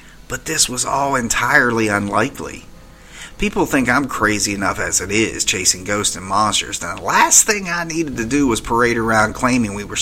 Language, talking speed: English, 190 wpm